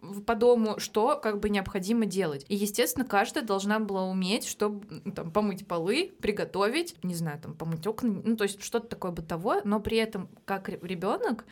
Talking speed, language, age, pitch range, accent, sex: 175 wpm, Russian, 20-39, 175-210 Hz, native, female